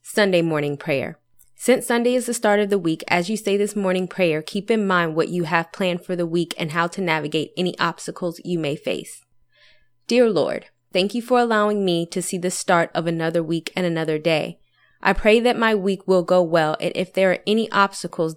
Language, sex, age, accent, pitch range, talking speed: English, female, 20-39, American, 165-200 Hz, 220 wpm